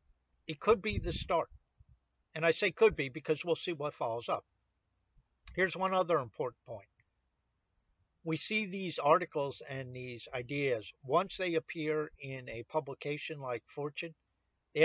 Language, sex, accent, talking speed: English, male, American, 150 wpm